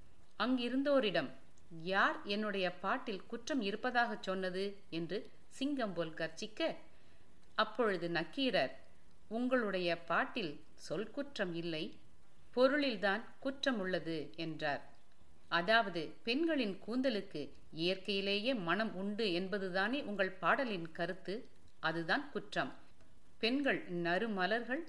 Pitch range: 170-225 Hz